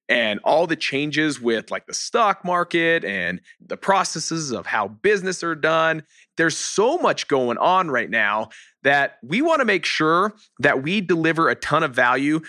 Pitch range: 130-170 Hz